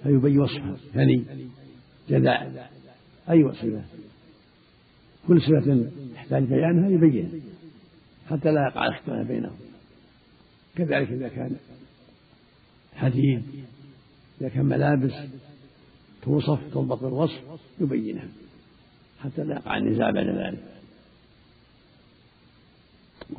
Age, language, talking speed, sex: 70-89, Arabic, 85 wpm, male